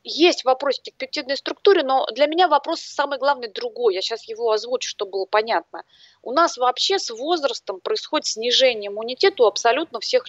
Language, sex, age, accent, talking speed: Russian, female, 30-49, native, 175 wpm